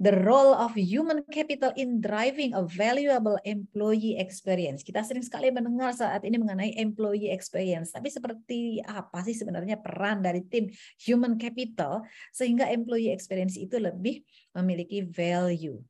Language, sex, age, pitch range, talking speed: English, female, 30-49, 180-240 Hz, 140 wpm